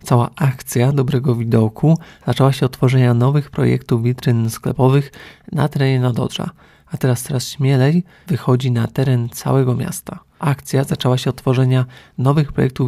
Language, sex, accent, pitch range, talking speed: Polish, male, native, 125-140 Hz, 145 wpm